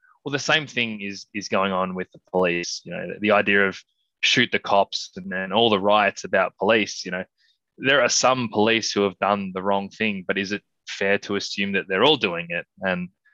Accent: Australian